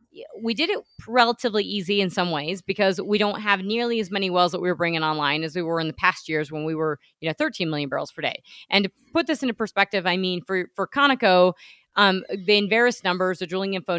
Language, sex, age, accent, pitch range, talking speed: English, female, 30-49, American, 180-220 Hz, 240 wpm